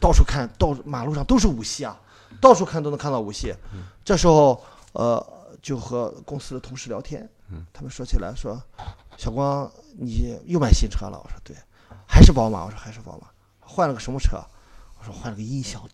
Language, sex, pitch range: Chinese, male, 100-140 Hz